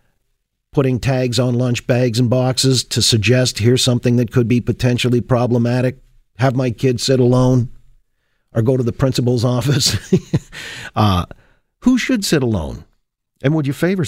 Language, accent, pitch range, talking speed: English, American, 115-140 Hz, 155 wpm